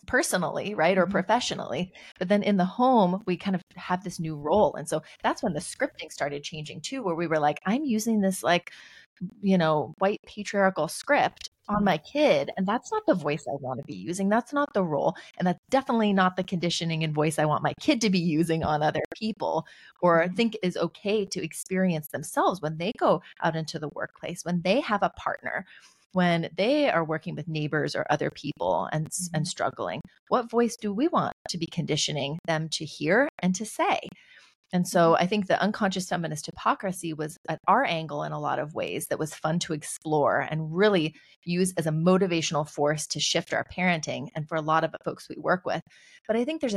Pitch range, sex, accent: 160-200 Hz, female, American